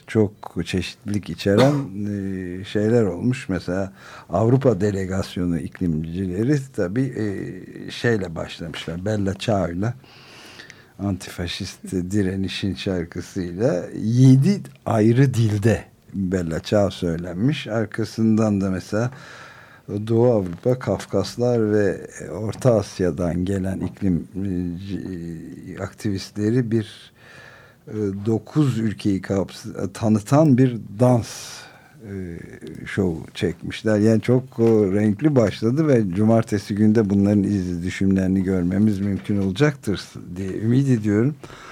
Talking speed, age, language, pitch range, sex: 85 wpm, 60-79, Turkish, 95-120 Hz, male